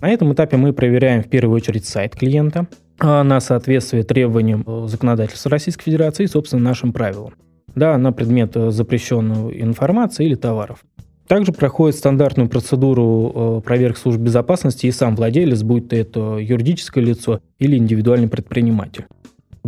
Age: 20-39